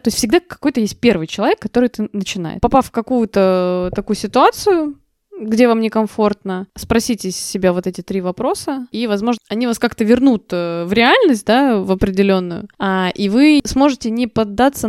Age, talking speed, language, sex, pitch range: 20-39, 160 wpm, Russian, female, 195-240 Hz